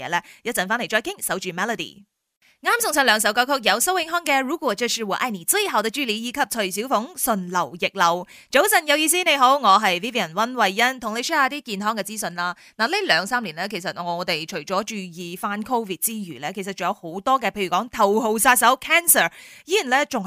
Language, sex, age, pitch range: Chinese, female, 20-39, 195-265 Hz